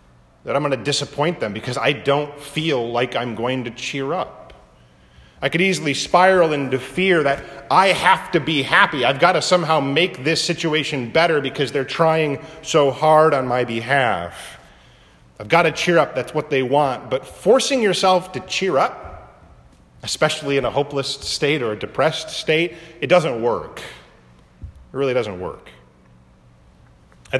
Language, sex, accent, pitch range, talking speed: English, male, American, 120-165 Hz, 165 wpm